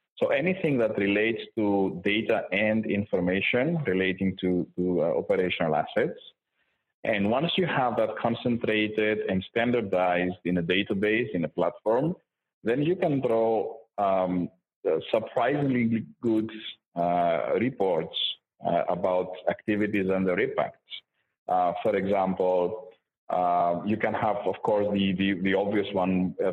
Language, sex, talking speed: English, male, 130 wpm